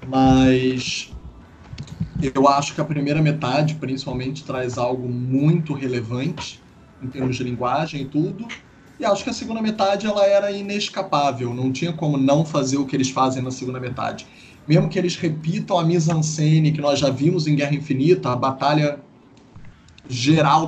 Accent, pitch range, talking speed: Brazilian, 135-170 Hz, 165 wpm